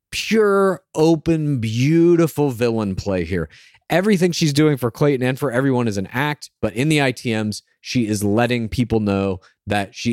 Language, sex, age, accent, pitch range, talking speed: English, male, 30-49, American, 105-150 Hz, 165 wpm